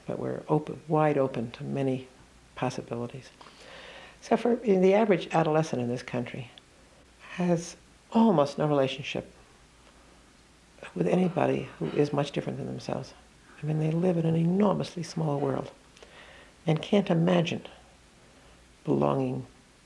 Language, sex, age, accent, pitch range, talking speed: English, female, 60-79, American, 130-160 Hz, 120 wpm